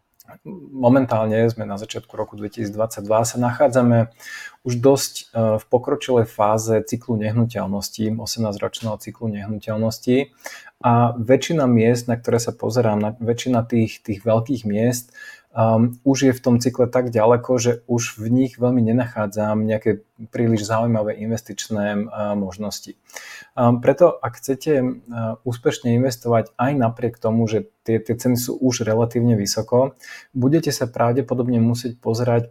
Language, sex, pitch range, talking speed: Slovak, male, 110-125 Hz, 135 wpm